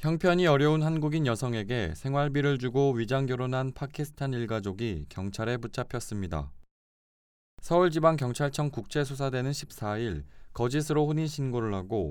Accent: native